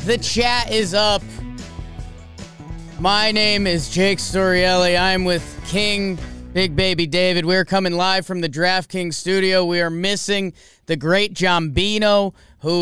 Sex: male